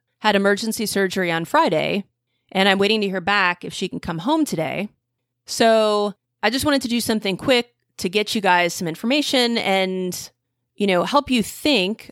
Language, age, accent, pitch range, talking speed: English, 30-49, American, 175-230 Hz, 185 wpm